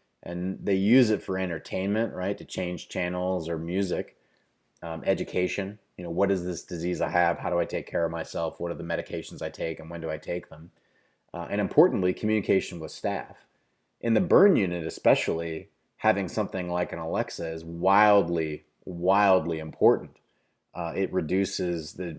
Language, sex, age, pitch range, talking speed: English, male, 30-49, 85-100 Hz, 175 wpm